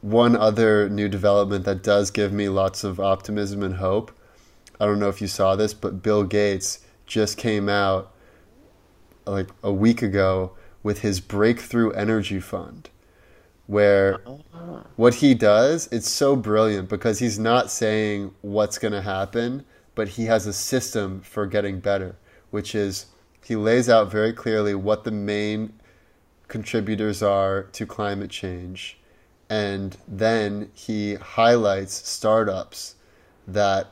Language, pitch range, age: English, 100-110 Hz, 20-39